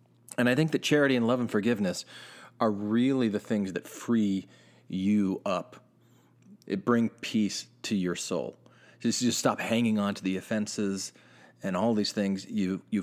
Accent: American